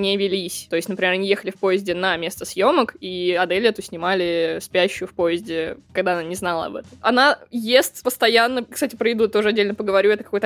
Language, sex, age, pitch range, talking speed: Russian, female, 20-39, 190-255 Hz, 205 wpm